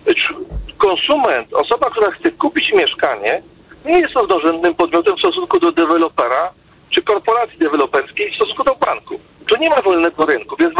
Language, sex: Polish, male